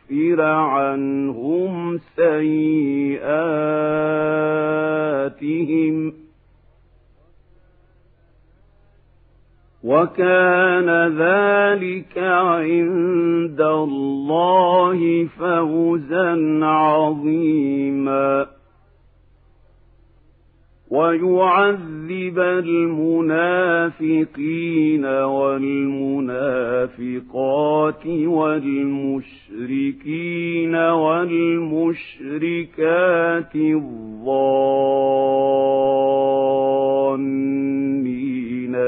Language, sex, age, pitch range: Arabic, male, 50-69, 135-170 Hz